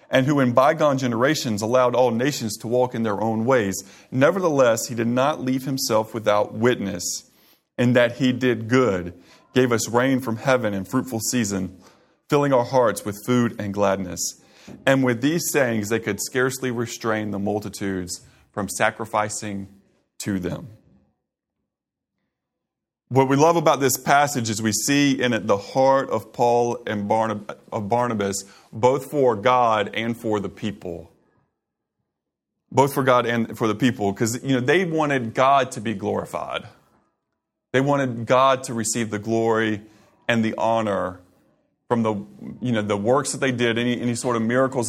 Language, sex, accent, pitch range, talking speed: English, male, American, 105-130 Hz, 160 wpm